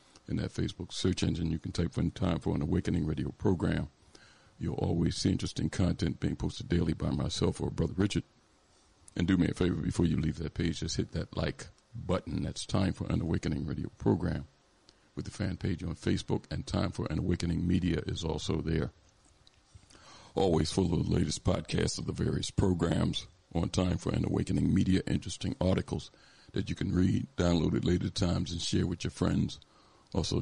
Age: 50-69